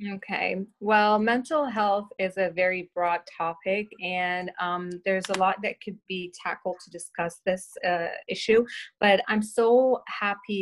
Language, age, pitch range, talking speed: English, 30-49, 185-225 Hz, 155 wpm